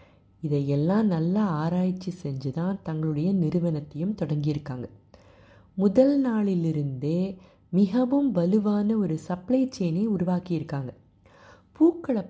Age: 30-49